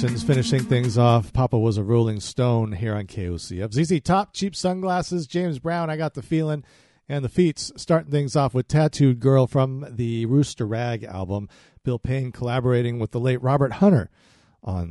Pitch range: 120-150 Hz